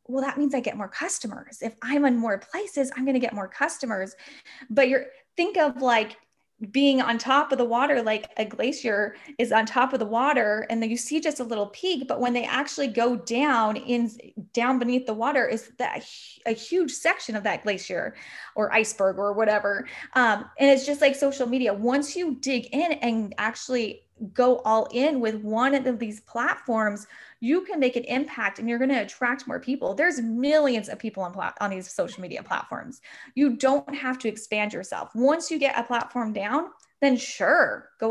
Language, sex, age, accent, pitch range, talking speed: English, female, 10-29, American, 220-275 Hz, 200 wpm